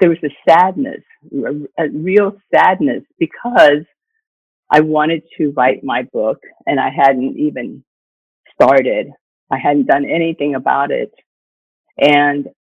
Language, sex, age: English, female, 50-69